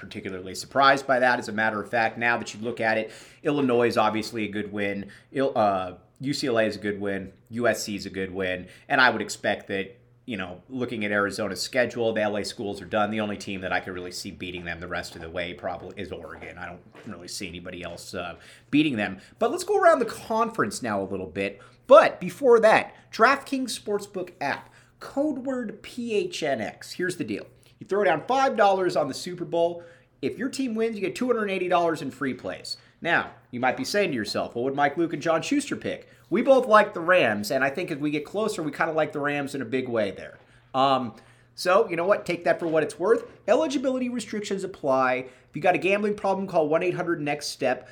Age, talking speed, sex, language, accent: 30-49, 220 wpm, male, English, American